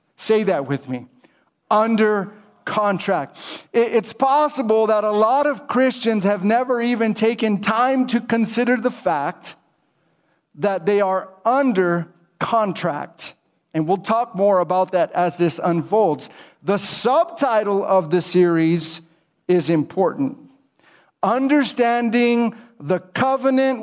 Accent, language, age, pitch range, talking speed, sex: American, English, 50-69, 190-240 Hz, 115 wpm, male